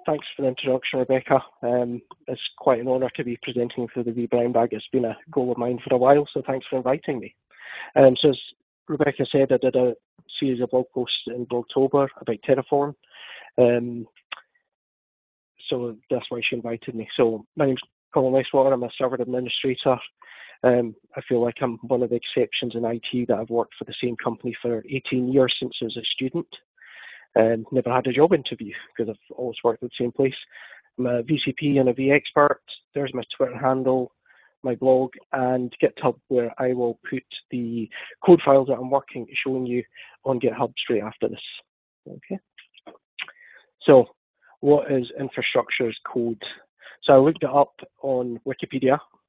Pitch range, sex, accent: 120-135 Hz, male, British